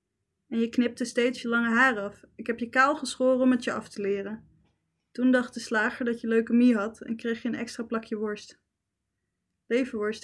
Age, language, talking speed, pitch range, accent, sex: 20-39, Dutch, 205 wpm, 210-250 Hz, Dutch, female